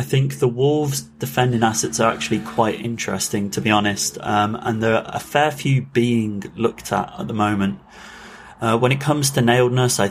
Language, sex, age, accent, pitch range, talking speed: English, male, 30-49, British, 100-120 Hz, 195 wpm